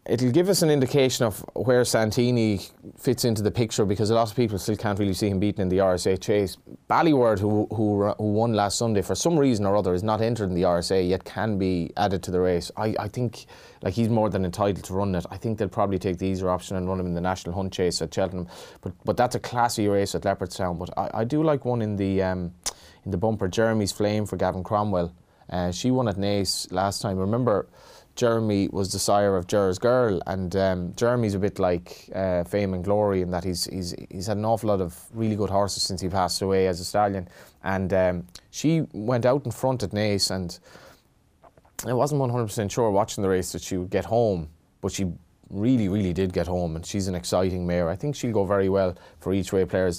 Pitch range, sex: 95-110 Hz, male